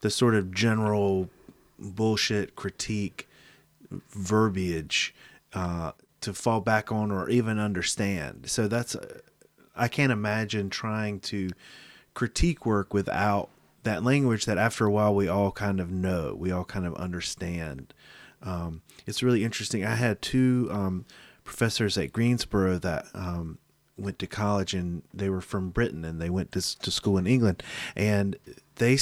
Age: 30-49